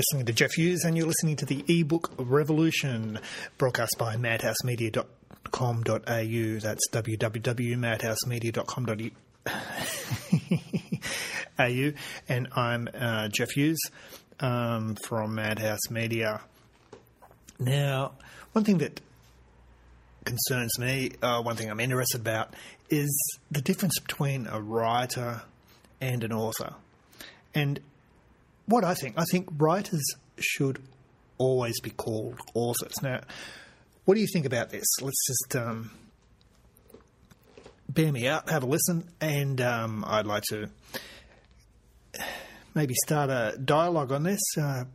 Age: 30-49